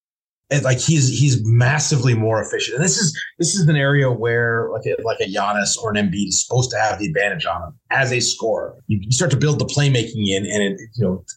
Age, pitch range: 30-49, 110-150 Hz